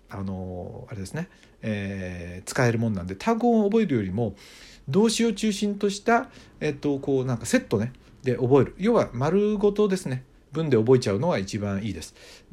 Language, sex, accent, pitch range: Japanese, male, native, 110-180 Hz